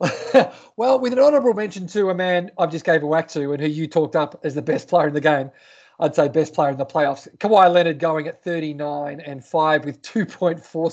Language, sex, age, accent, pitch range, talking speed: English, male, 30-49, Australian, 155-185 Hz, 225 wpm